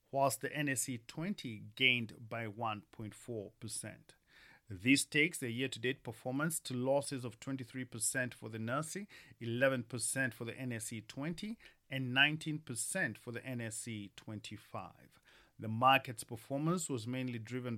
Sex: male